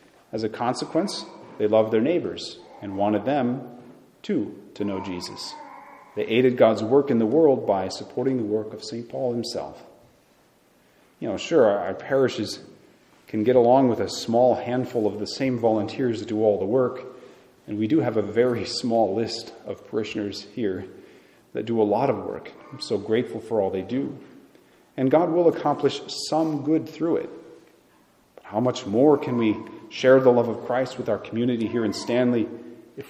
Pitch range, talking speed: 110-130 Hz, 180 wpm